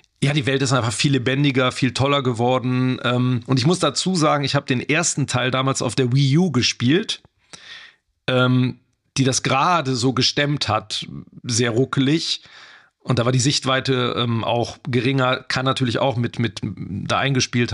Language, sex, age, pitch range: German, male, 40-59, 120-140 Hz